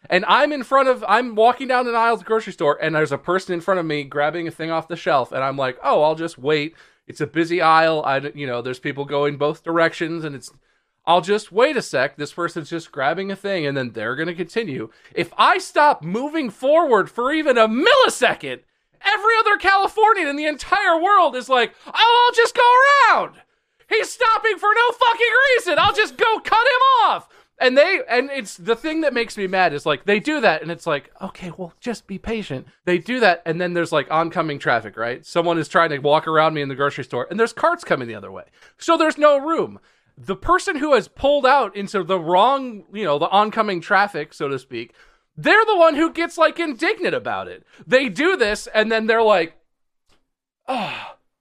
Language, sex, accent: English, male, American